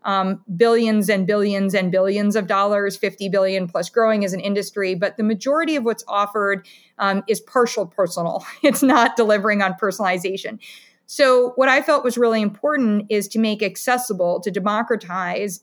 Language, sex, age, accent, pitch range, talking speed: English, female, 30-49, American, 195-225 Hz, 165 wpm